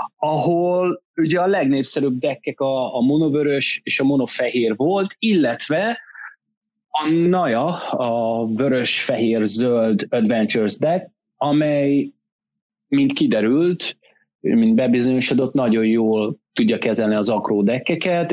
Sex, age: male, 30-49